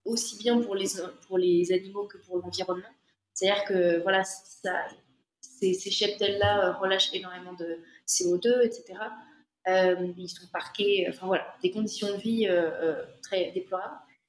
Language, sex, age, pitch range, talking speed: French, female, 20-39, 180-220 Hz, 145 wpm